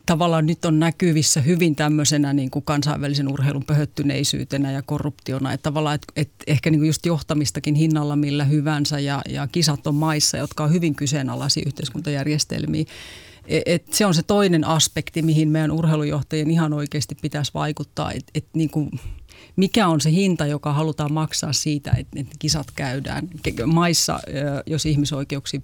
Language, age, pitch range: Finnish, 30-49, 145-155 Hz